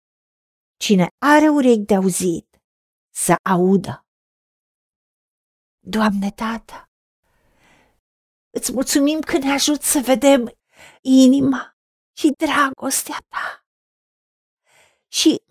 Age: 50-69